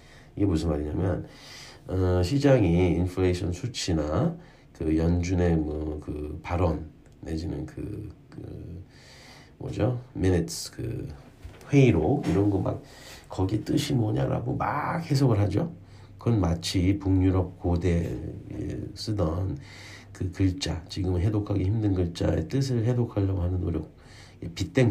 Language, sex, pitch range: Korean, male, 90-105 Hz